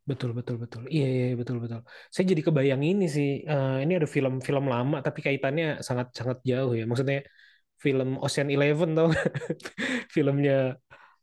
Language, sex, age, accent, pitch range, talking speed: Indonesian, male, 20-39, native, 130-155 Hz, 145 wpm